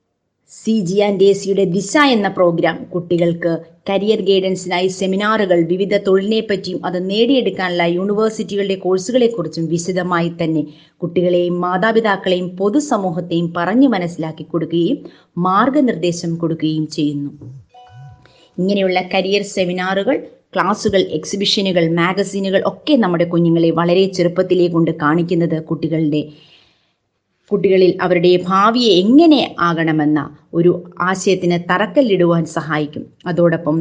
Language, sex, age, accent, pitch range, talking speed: Malayalam, female, 20-39, native, 165-195 Hz, 100 wpm